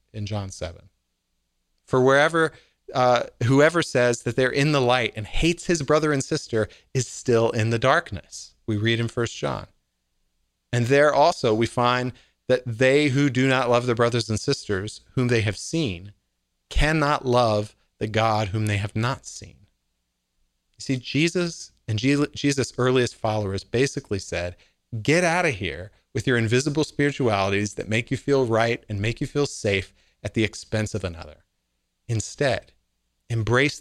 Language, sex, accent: English, male, American